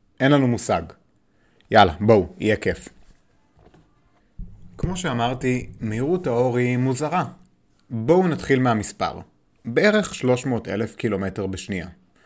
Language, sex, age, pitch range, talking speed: Hebrew, male, 30-49, 105-140 Hz, 105 wpm